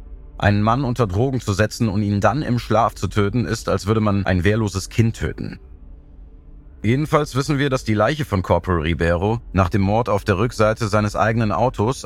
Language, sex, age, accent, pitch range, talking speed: German, male, 30-49, German, 85-110 Hz, 195 wpm